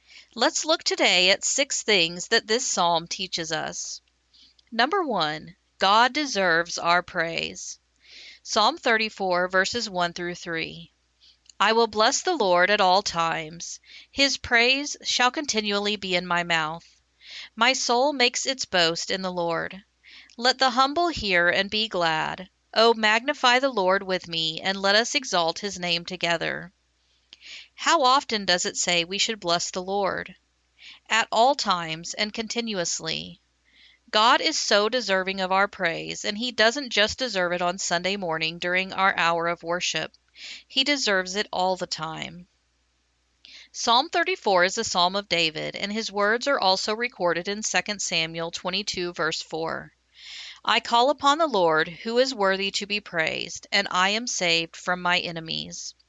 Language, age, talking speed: English, 50-69, 155 wpm